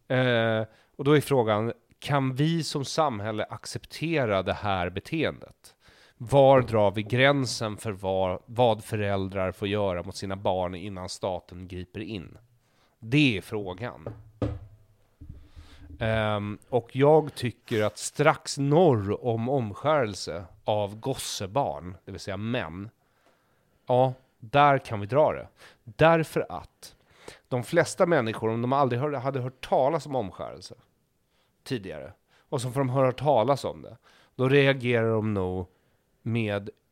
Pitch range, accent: 100-135 Hz, native